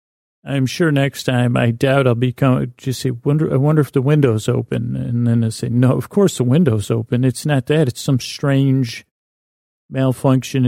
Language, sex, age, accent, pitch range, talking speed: English, male, 40-59, American, 120-135 Hz, 190 wpm